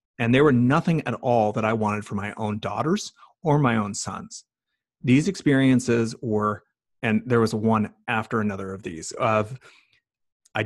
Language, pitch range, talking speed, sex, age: English, 105-125 Hz, 170 wpm, male, 30-49